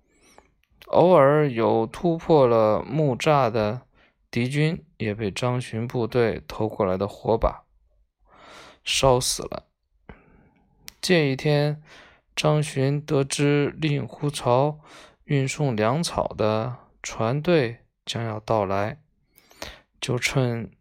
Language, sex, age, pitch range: Chinese, male, 20-39, 115-150 Hz